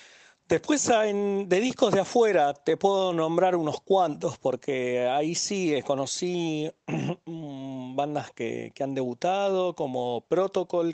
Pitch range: 115-155 Hz